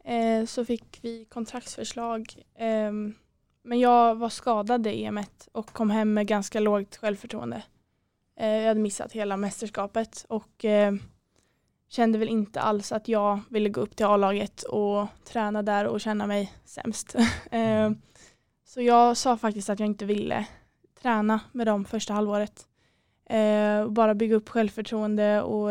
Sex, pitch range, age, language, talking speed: female, 205-225 Hz, 20-39, Swedish, 140 wpm